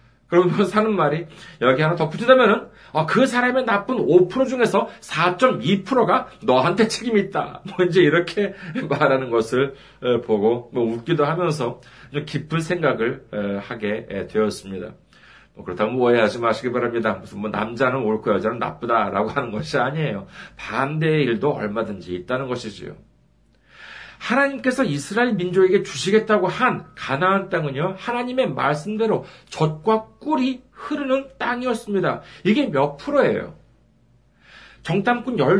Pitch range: 135-220 Hz